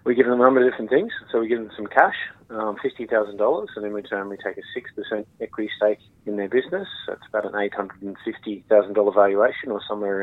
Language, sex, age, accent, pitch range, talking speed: English, male, 30-49, Australian, 100-115 Hz, 205 wpm